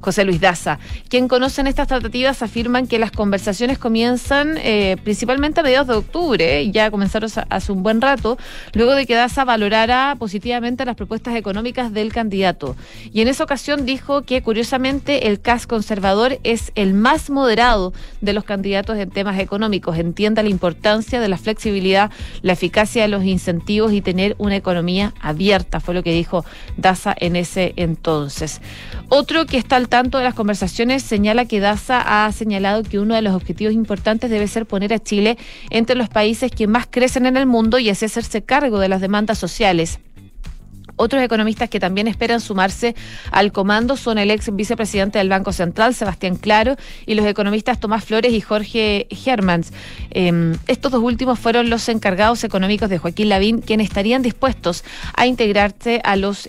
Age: 30-49